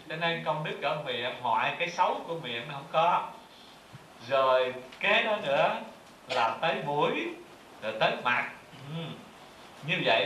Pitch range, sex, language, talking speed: 145-185 Hz, male, Vietnamese, 145 wpm